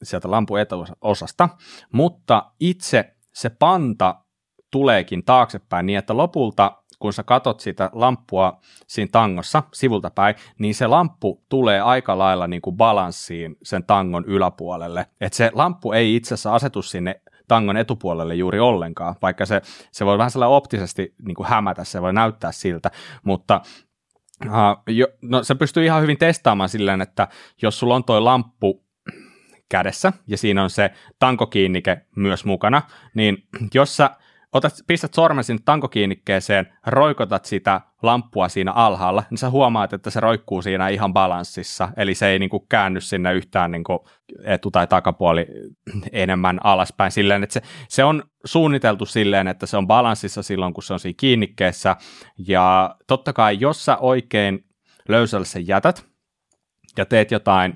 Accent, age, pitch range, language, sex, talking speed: native, 30-49, 95-125 Hz, Finnish, male, 155 wpm